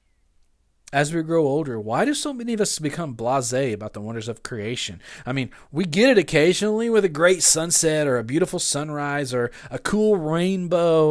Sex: male